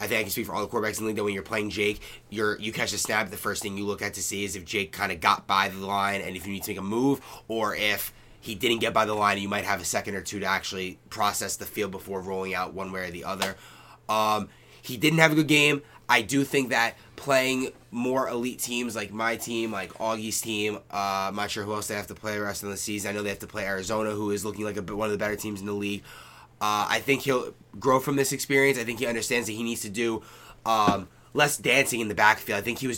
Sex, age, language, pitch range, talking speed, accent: male, 20-39, English, 105-130 Hz, 285 wpm, American